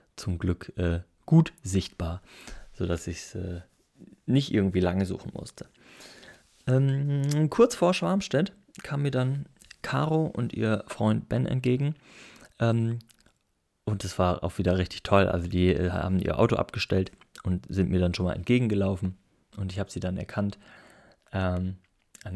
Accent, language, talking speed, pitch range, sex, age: German, German, 150 wpm, 90-120 Hz, male, 30-49